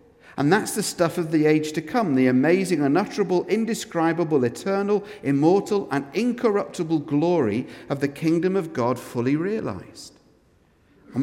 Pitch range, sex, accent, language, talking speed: 150-205 Hz, male, British, English, 140 wpm